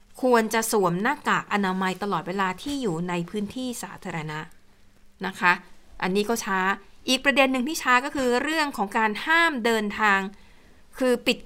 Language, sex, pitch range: Thai, female, 205-255 Hz